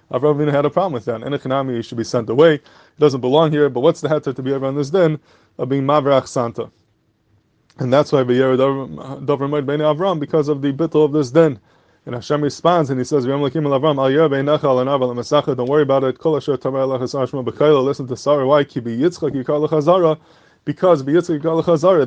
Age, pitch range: 20-39, 130-150 Hz